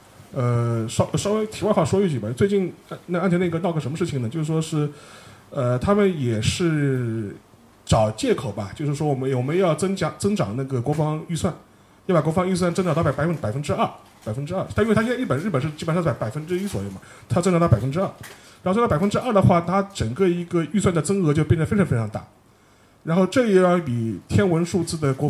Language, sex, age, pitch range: Chinese, male, 30-49, 130-180 Hz